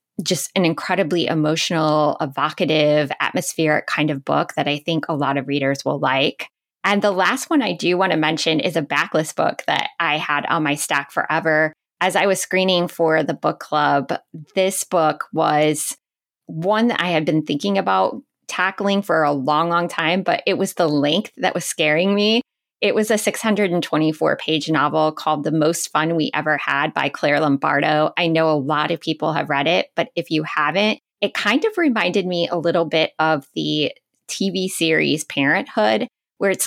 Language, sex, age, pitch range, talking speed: English, female, 20-39, 150-185 Hz, 190 wpm